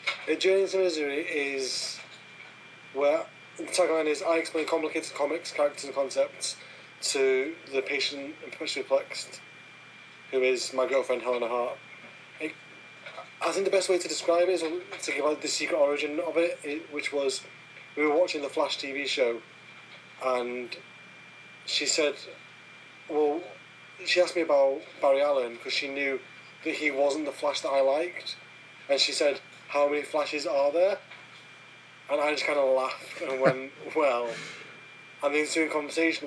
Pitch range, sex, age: 135-160 Hz, male, 30-49